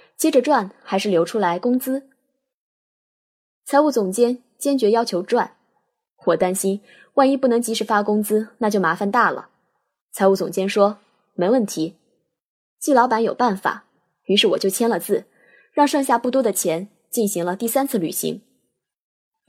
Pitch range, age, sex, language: 195-265 Hz, 20-39, female, Chinese